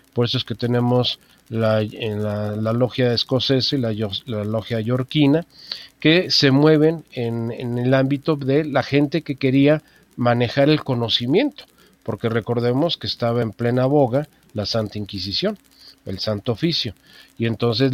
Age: 50-69